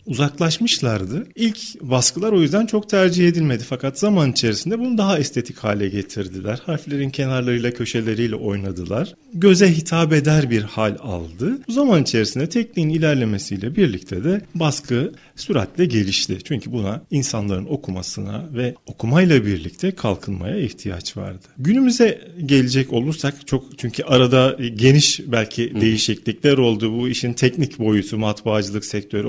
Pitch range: 110-185 Hz